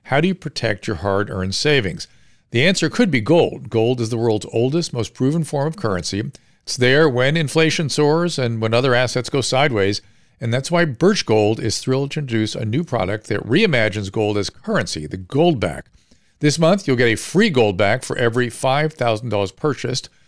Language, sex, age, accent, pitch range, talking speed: English, male, 50-69, American, 110-150 Hz, 185 wpm